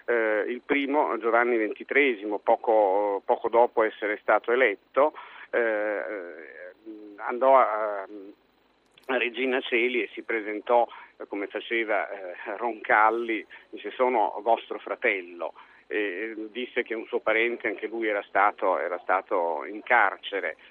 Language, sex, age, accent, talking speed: Italian, male, 50-69, native, 125 wpm